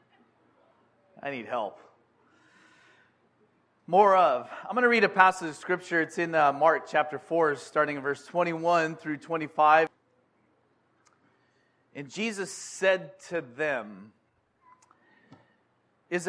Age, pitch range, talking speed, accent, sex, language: 40-59, 155-215 Hz, 115 wpm, American, male, English